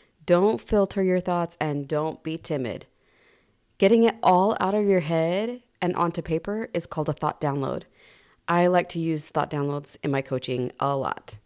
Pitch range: 155-205 Hz